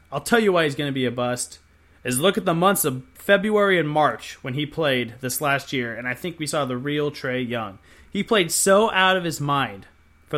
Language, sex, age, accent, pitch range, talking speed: English, male, 30-49, American, 120-170 Hz, 245 wpm